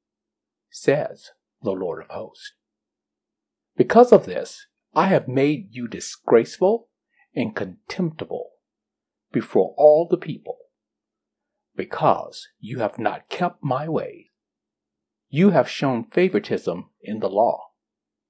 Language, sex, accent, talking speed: English, male, American, 110 wpm